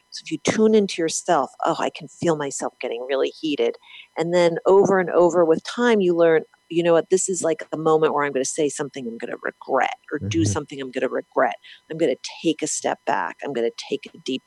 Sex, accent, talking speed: female, American, 255 wpm